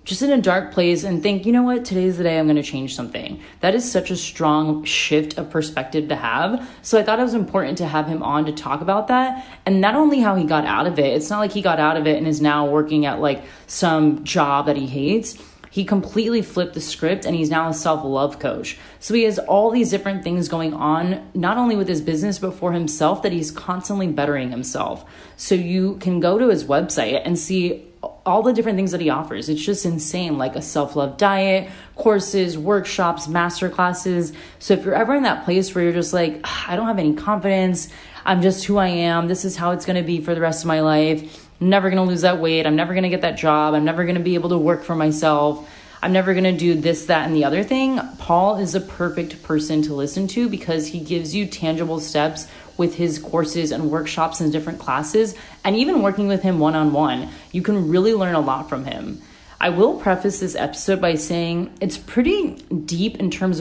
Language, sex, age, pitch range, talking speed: English, female, 20-39, 155-195 Hz, 230 wpm